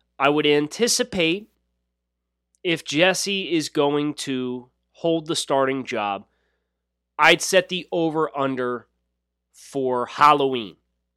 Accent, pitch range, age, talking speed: American, 105-165 Hz, 30-49, 95 wpm